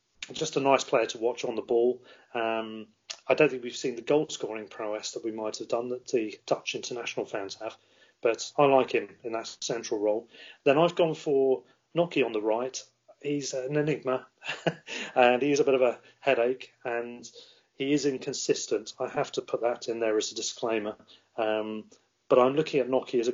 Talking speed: 200 wpm